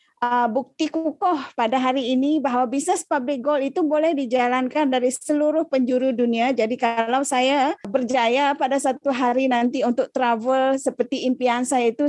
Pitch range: 235-305 Hz